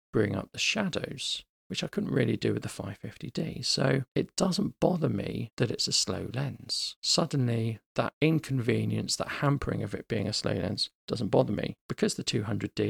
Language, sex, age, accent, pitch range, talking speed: English, male, 40-59, British, 110-145 Hz, 180 wpm